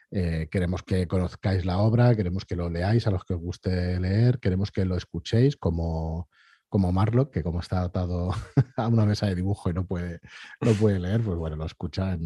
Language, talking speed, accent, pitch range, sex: Spanish, 205 wpm, Spanish, 85-105 Hz, male